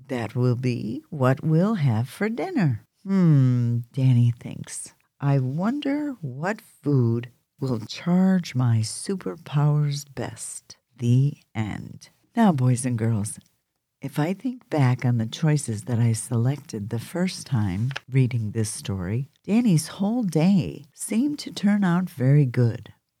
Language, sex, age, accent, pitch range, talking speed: English, female, 50-69, American, 120-160 Hz, 130 wpm